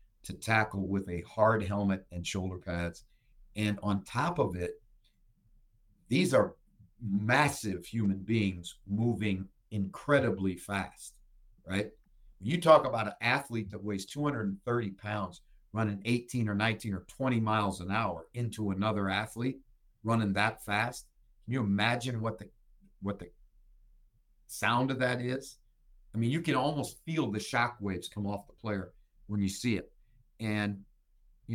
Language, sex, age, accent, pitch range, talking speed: English, male, 50-69, American, 100-120 Hz, 145 wpm